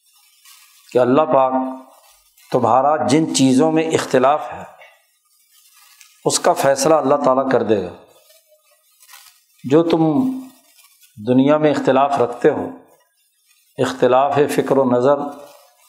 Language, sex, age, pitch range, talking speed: Urdu, male, 50-69, 135-210 Hz, 105 wpm